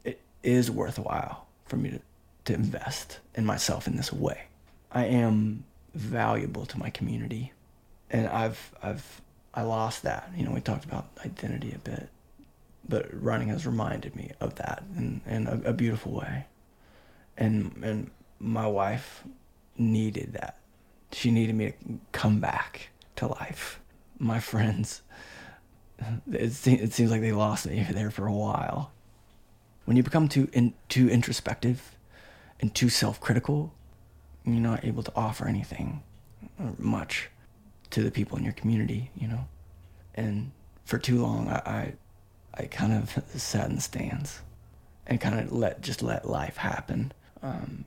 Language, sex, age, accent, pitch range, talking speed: English, male, 20-39, American, 105-120 Hz, 150 wpm